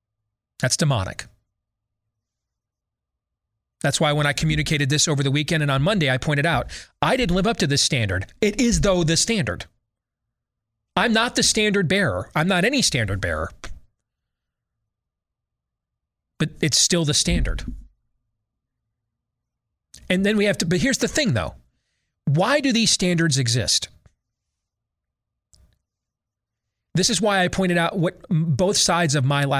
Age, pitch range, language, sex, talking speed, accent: 40-59, 110-175 Hz, English, male, 140 wpm, American